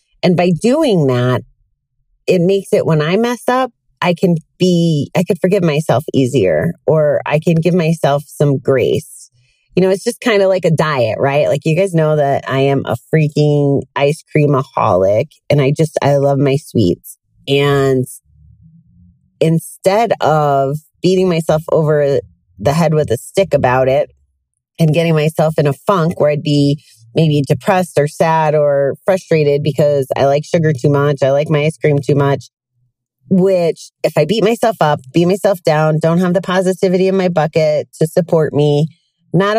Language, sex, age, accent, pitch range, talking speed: English, female, 30-49, American, 140-175 Hz, 175 wpm